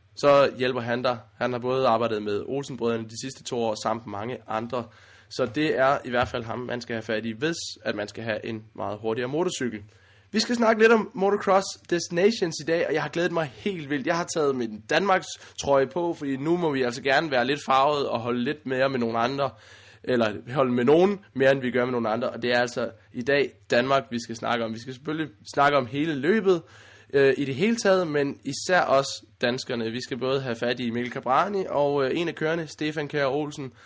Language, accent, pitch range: Danish, native, 115-150 Hz